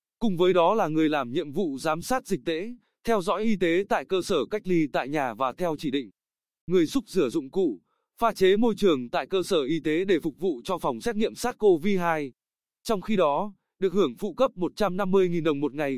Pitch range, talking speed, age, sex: 160-215 Hz, 225 wpm, 20-39, male